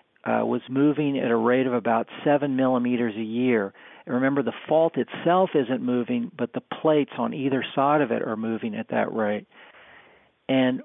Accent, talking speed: American, 185 wpm